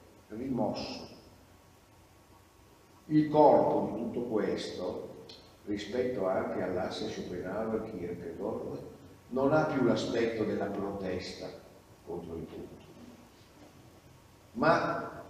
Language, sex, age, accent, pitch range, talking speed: Italian, male, 50-69, native, 100-130 Hz, 80 wpm